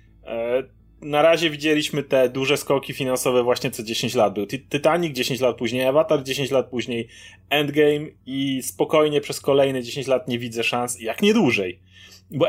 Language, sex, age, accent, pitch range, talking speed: Polish, male, 30-49, native, 130-160 Hz, 165 wpm